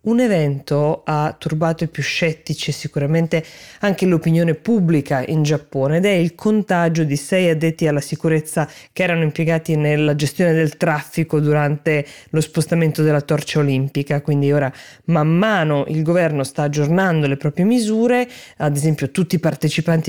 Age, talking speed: 20-39, 155 wpm